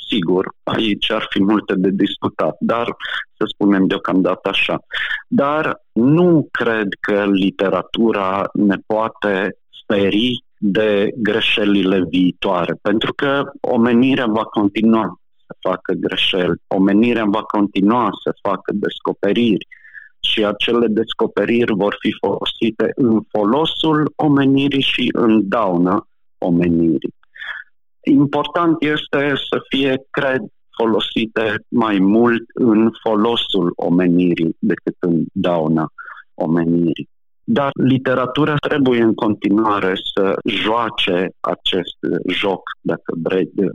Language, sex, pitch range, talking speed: Romanian, male, 95-120 Hz, 105 wpm